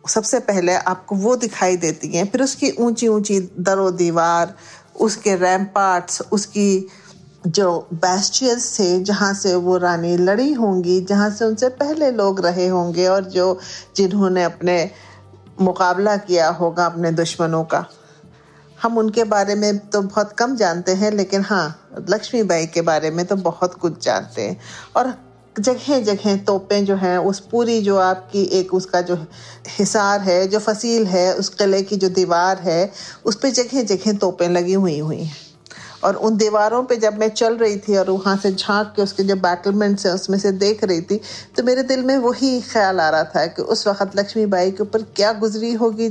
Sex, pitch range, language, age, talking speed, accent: female, 180-215 Hz, Hindi, 50-69, 175 wpm, native